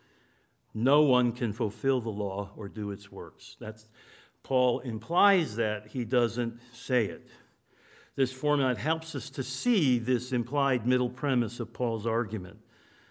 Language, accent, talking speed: English, American, 140 wpm